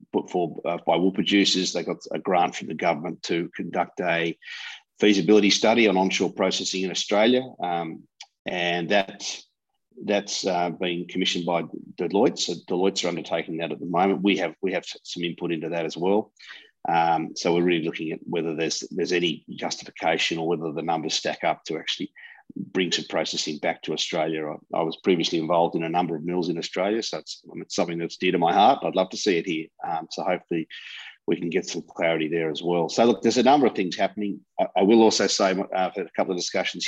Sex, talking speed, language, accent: male, 215 wpm, English, Australian